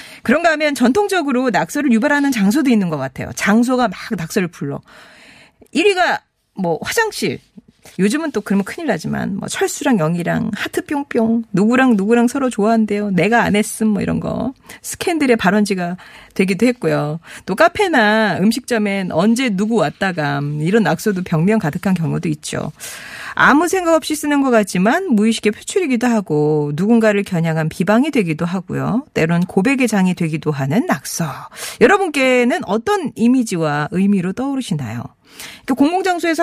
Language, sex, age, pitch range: Korean, female, 40-59, 180-270 Hz